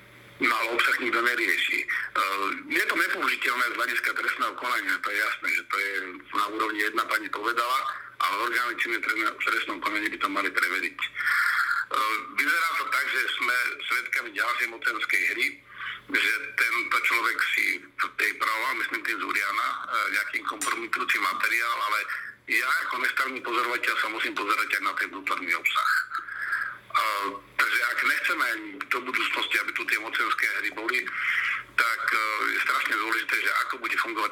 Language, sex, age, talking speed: Slovak, male, 50-69, 150 wpm